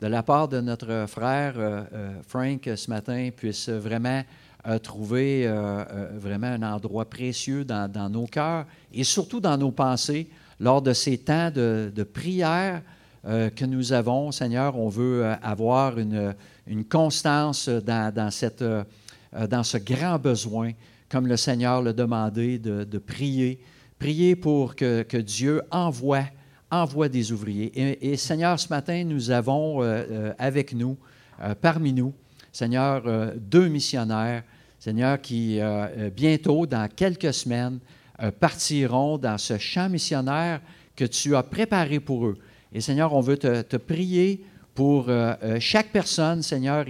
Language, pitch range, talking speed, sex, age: French, 115-150 Hz, 155 wpm, male, 50-69